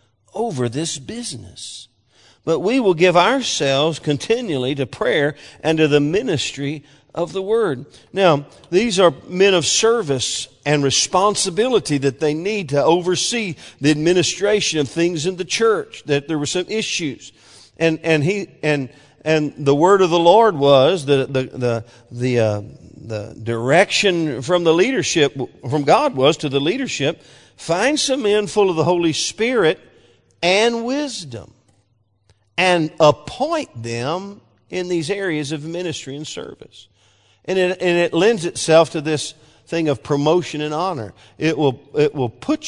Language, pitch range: English, 125-180 Hz